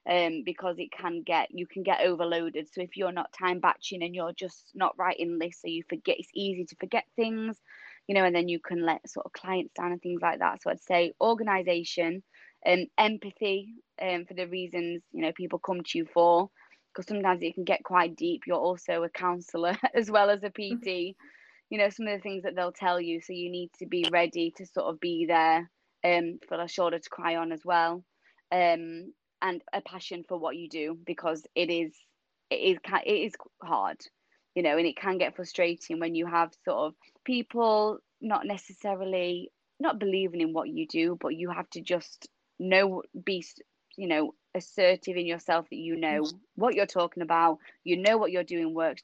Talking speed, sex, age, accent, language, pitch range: 210 wpm, female, 20-39, British, English, 170-190 Hz